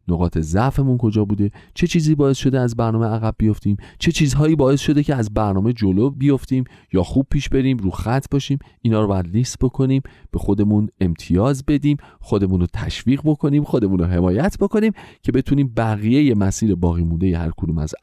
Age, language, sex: 40-59, Persian, male